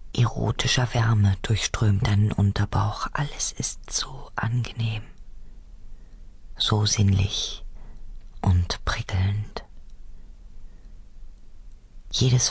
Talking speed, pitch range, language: 65 wpm, 95-110 Hz, German